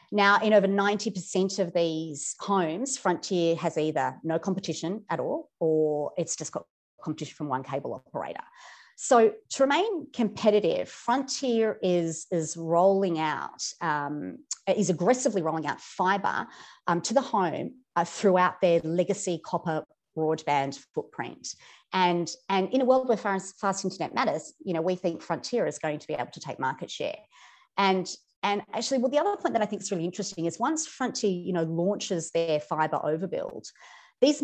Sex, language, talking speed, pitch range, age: female, English, 170 wpm, 160-215 Hz, 40-59